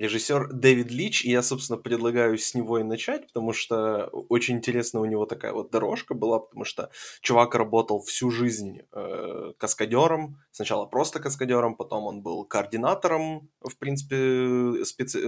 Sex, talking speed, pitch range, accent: male, 155 wpm, 110-150 Hz, native